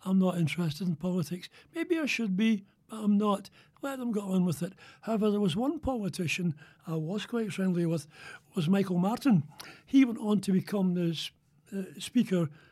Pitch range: 180-225 Hz